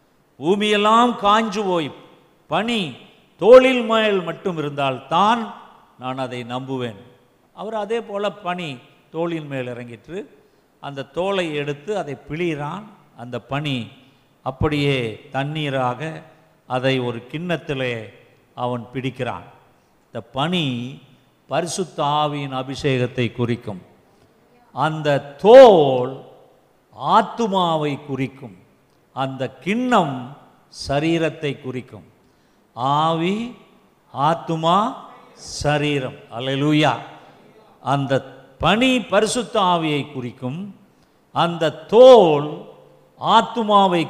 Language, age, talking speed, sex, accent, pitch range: Tamil, 50-69, 80 wpm, male, native, 135-200 Hz